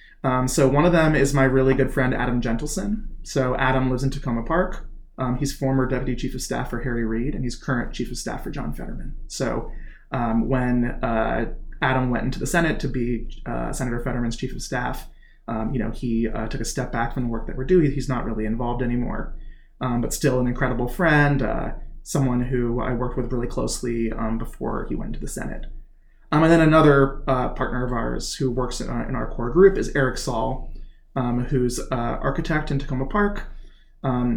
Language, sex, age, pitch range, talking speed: English, male, 30-49, 120-145 Hz, 210 wpm